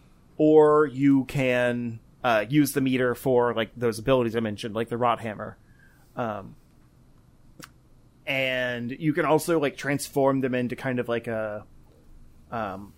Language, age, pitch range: English, 30-49, 120-150 Hz